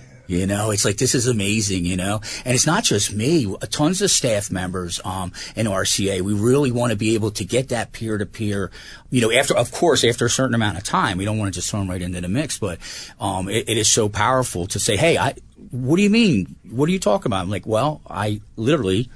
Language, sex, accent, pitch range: English, male, American, 95-125 Hz